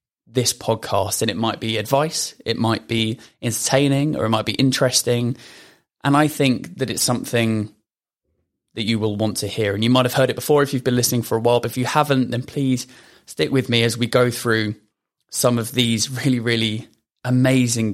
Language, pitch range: English, 115-130 Hz